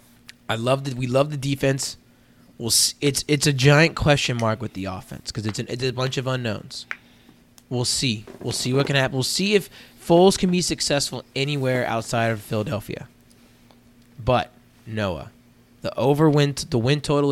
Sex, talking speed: male, 175 wpm